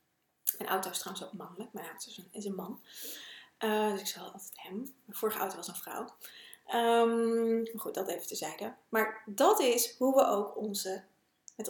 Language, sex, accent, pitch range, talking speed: Dutch, female, Dutch, 205-245 Hz, 180 wpm